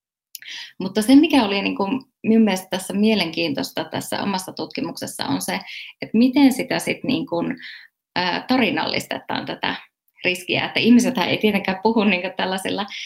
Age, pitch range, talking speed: 20-39, 195-245 Hz, 140 wpm